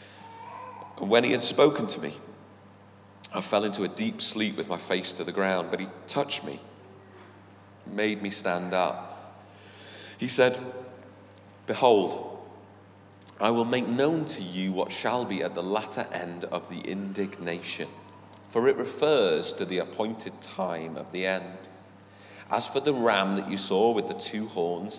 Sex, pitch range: male, 95-115 Hz